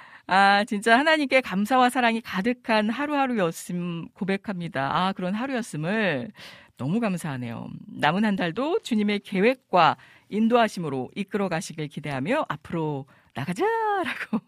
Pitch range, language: 170-235 Hz, Korean